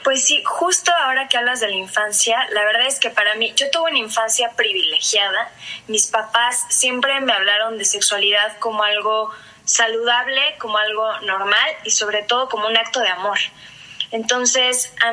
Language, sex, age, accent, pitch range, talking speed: Spanish, female, 20-39, Mexican, 210-245 Hz, 170 wpm